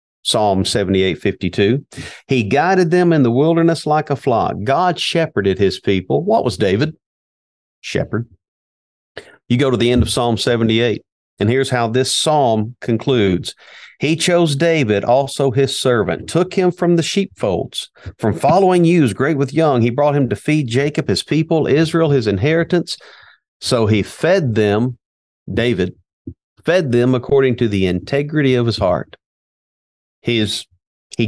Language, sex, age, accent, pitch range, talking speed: English, male, 50-69, American, 100-135 Hz, 150 wpm